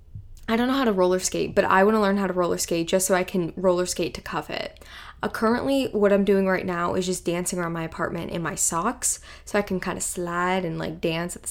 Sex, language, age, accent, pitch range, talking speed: female, English, 10-29, American, 180-240 Hz, 270 wpm